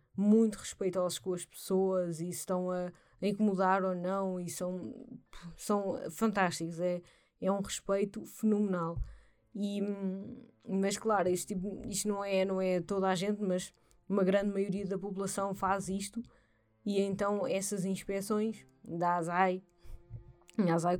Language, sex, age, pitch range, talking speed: Portuguese, female, 20-39, 175-200 Hz, 140 wpm